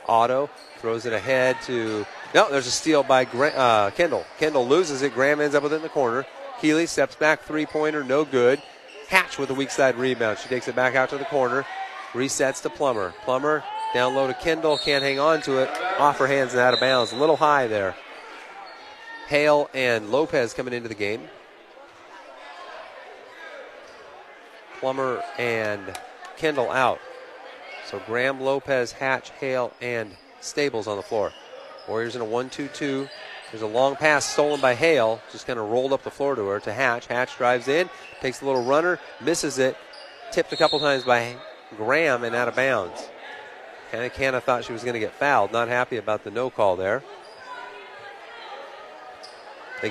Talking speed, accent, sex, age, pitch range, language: 175 wpm, American, male, 30-49, 125-150 Hz, English